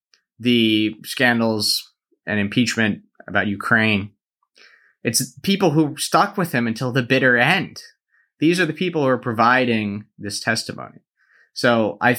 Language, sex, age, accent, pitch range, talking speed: English, male, 30-49, American, 105-125 Hz, 135 wpm